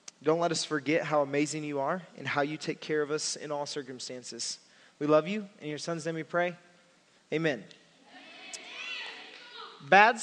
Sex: male